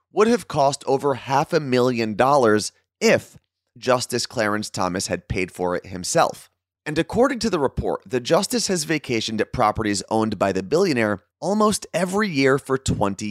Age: 30-49